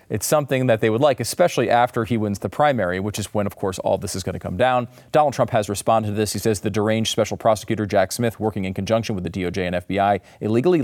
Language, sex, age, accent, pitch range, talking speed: English, male, 40-59, American, 100-125 Hz, 260 wpm